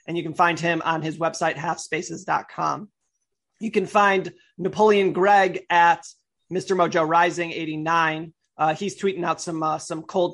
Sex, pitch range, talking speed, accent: male, 165-190 Hz, 155 wpm, American